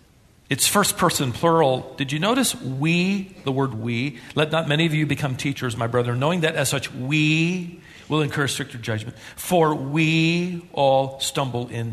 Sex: male